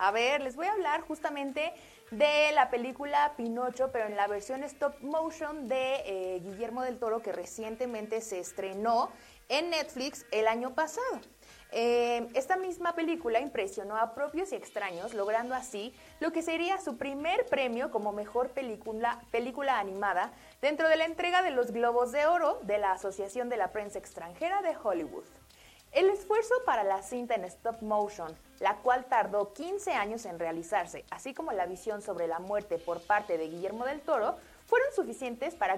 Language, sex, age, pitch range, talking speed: Spanish, female, 30-49, 200-290 Hz, 170 wpm